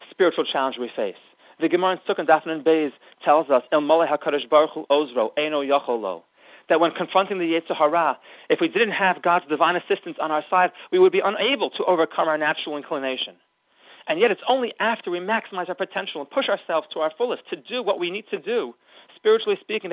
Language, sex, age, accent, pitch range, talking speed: English, male, 40-59, American, 150-190 Hz, 190 wpm